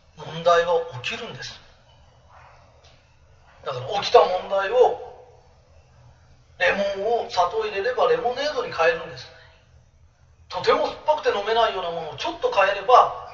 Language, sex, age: Japanese, male, 40-59